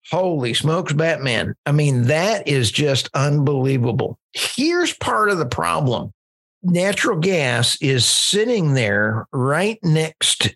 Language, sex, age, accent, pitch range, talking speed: English, male, 50-69, American, 120-150 Hz, 120 wpm